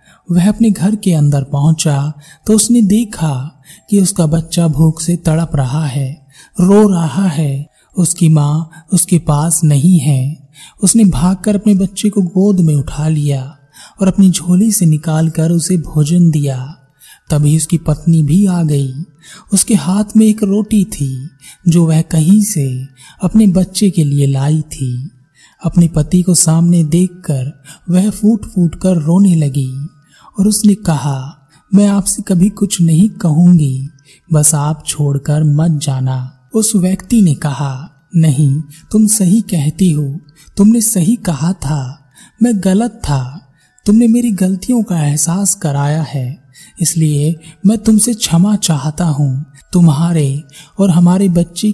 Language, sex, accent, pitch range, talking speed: Hindi, male, native, 150-190 Hz, 140 wpm